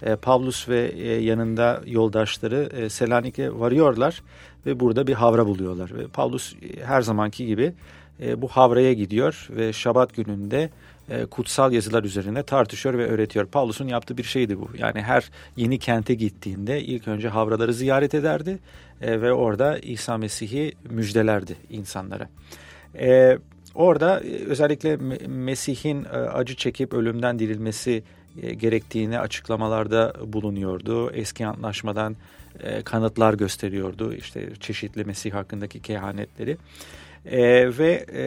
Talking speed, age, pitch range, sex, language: 110 wpm, 40-59, 105-130 Hz, male, Turkish